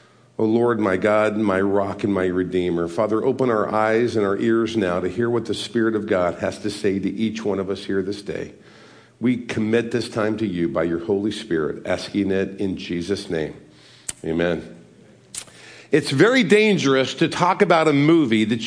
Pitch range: 115-175 Hz